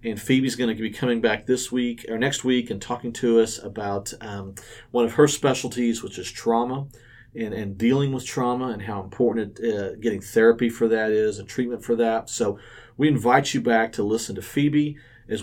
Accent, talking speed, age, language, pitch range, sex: American, 205 wpm, 40-59, English, 110-125 Hz, male